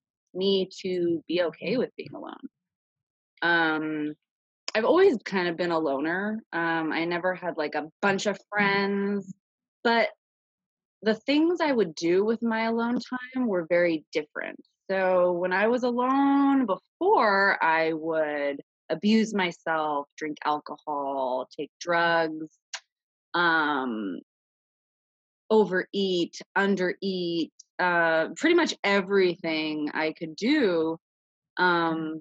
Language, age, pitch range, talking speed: English, 20-39, 165-220 Hz, 115 wpm